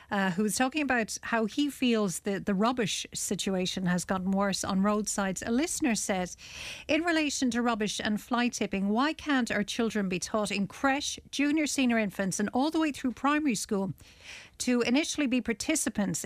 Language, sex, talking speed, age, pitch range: English, female, 175 wpm, 40-59, 195-245 Hz